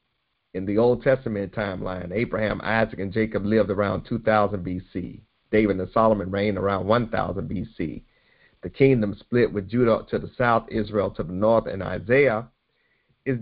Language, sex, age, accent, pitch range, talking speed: English, male, 50-69, American, 105-130 Hz, 155 wpm